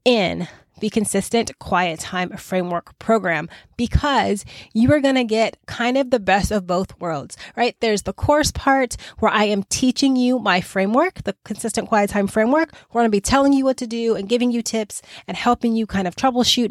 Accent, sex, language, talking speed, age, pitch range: American, female, English, 200 wpm, 20-39, 190-230 Hz